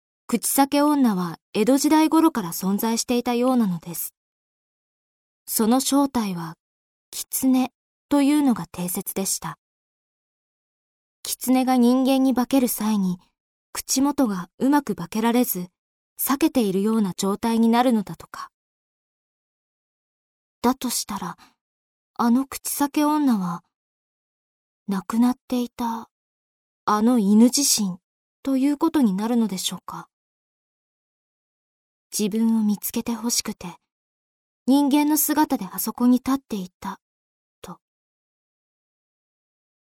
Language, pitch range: Japanese, 200-260 Hz